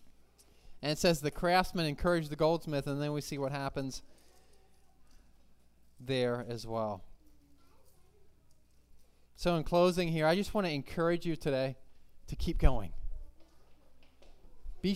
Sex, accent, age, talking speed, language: male, American, 20-39, 130 wpm, English